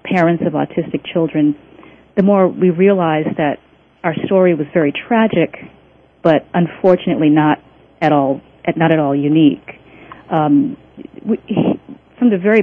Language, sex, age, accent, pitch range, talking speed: English, female, 40-59, American, 160-195 Hz, 140 wpm